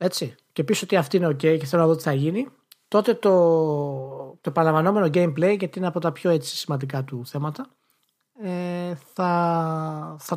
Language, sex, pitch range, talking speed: Greek, male, 145-185 Hz, 180 wpm